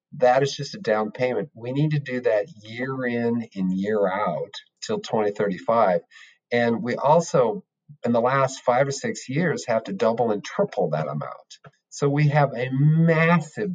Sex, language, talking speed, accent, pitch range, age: male, English, 175 wpm, American, 115-155 Hz, 50-69